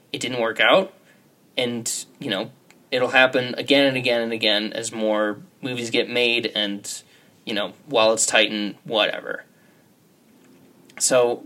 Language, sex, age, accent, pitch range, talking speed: English, male, 20-39, American, 115-140 Hz, 140 wpm